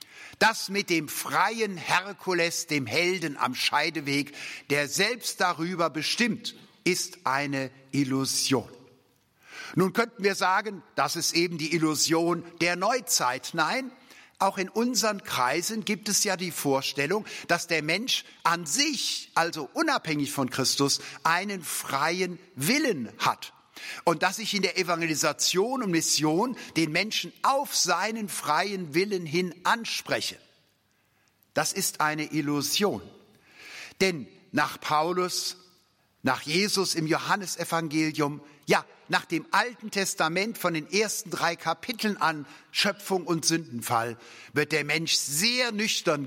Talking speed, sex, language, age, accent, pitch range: 125 wpm, male, German, 60-79, German, 145-195 Hz